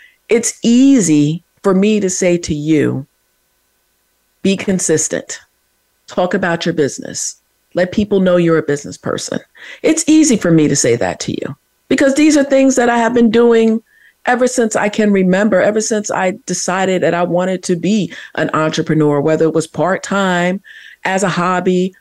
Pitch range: 155-210 Hz